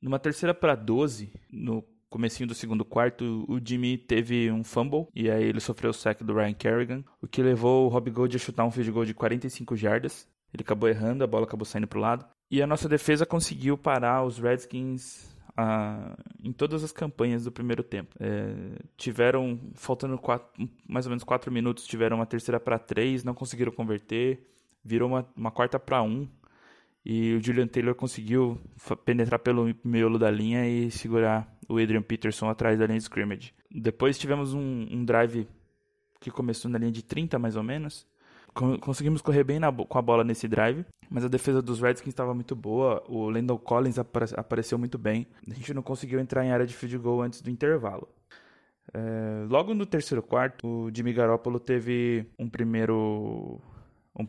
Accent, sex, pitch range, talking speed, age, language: Brazilian, male, 115-130 Hz, 190 wpm, 20-39, Portuguese